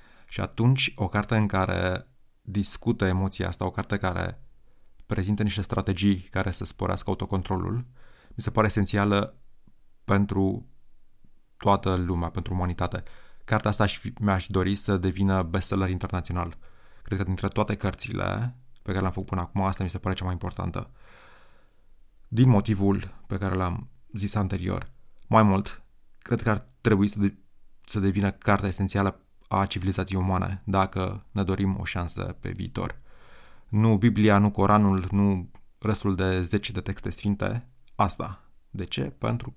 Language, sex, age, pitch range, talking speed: Romanian, male, 20-39, 95-110 Hz, 150 wpm